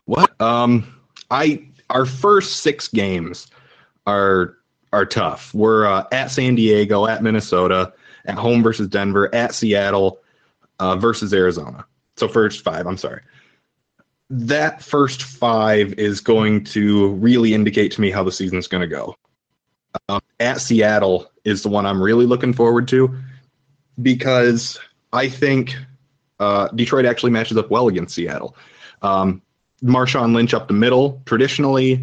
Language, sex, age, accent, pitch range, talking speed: English, male, 20-39, American, 100-120 Hz, 140 wpm